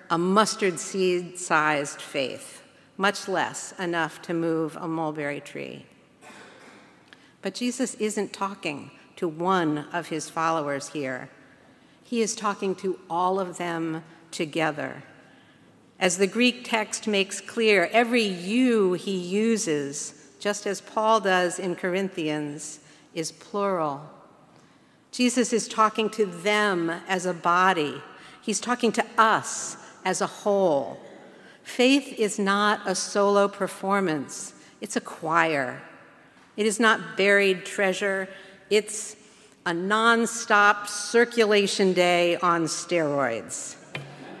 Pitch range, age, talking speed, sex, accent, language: 160-205 Hz, 50-69, 115 wpm, female, American, English